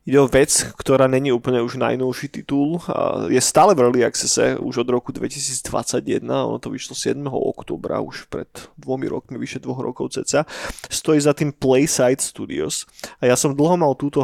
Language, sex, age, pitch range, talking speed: Slovak, male, 20-39, 125-150 Hz, 180 wpm